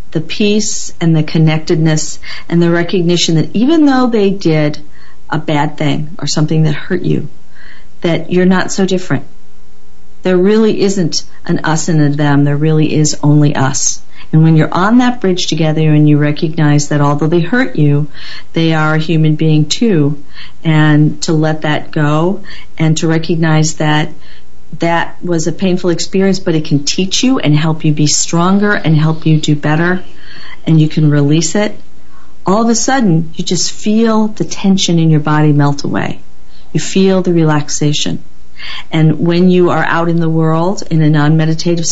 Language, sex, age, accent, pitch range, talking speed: English, female, 50-69, American, 150-180 Hz, 175 wpm